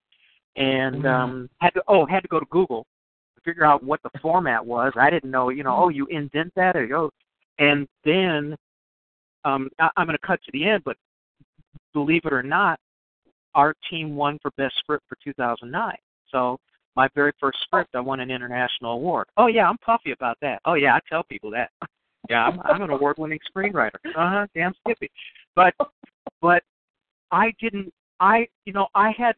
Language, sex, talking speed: English, male, 190 wpm